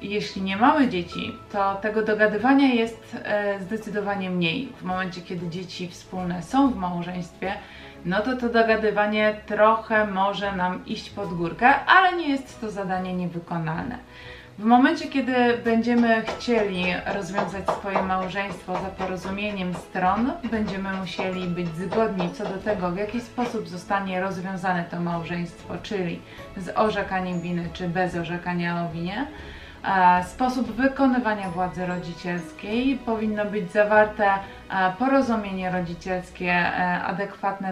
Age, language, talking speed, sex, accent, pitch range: 20-39, Polish, 125 wpm, female, native, 180-220 Hz